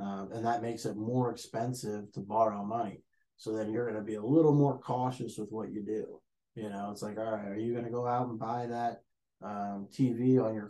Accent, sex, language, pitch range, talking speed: American, male, English, 105-125 Hz, 240 wpm